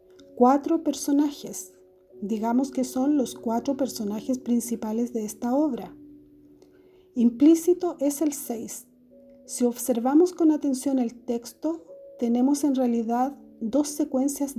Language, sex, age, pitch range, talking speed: Spanish, female, 40-59, 230-295 Hz, 110 wpm